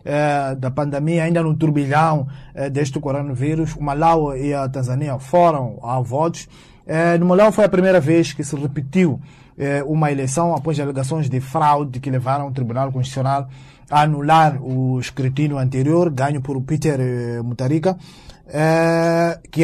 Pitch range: 135-170 Hz